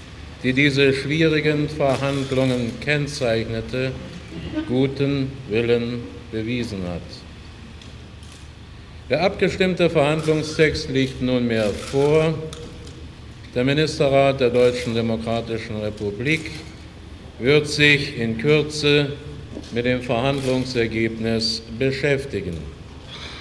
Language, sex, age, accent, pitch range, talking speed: German, male, 50-69, German, 115-150 Hz, 75 wpm